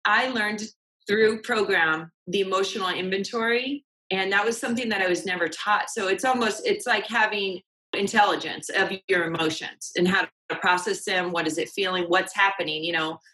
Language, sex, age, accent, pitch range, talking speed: English, female, 30-49, American, 175-215 Hz, 175 wpm